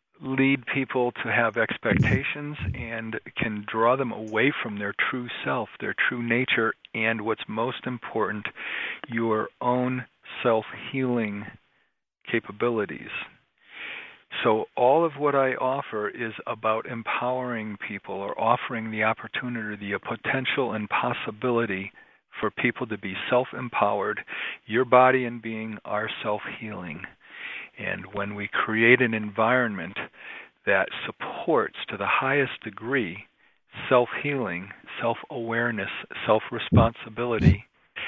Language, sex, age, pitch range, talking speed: English, male, 40-59, 110-125 Hz, 115 wpm